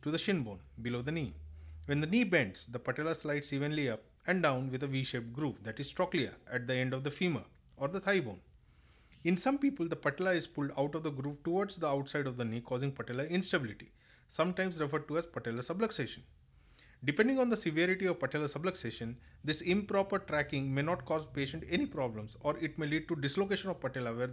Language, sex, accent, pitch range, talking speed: English, male, Indian, 130-175 Hz, 215 wpm